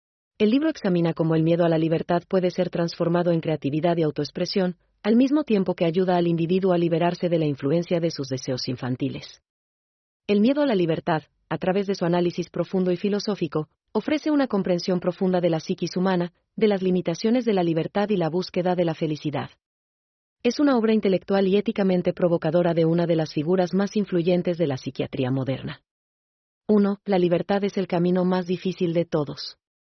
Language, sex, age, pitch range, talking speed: German, female, 40-59, 160-190 Hz, 185 wpm